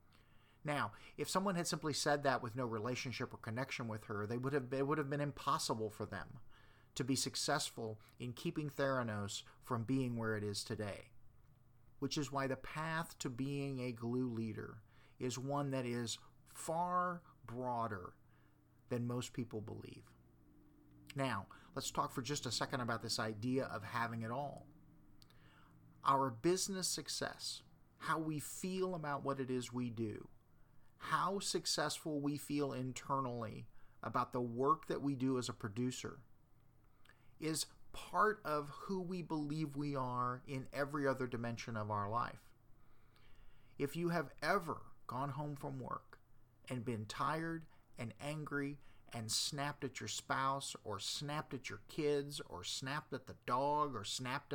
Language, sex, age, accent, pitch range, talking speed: English, male, 40-59, American, 115-145 Hz, 155 wpm